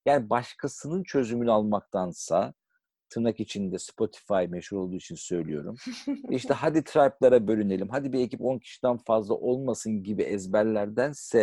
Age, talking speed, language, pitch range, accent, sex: 50-69, 125 wpm, Turkish, 105-140 Hz, native, male